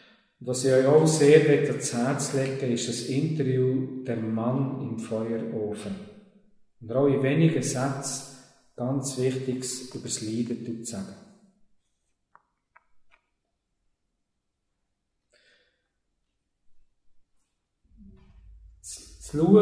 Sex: male